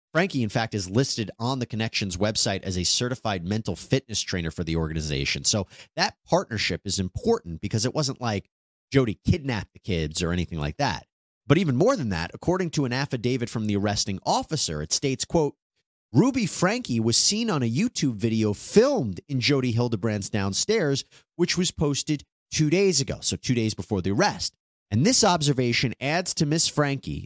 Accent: American